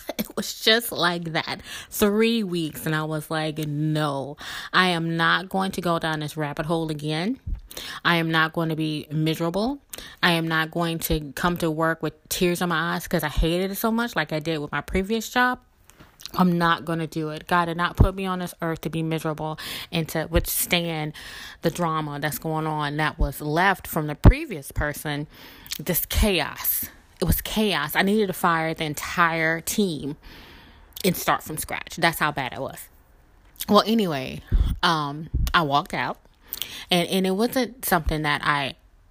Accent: American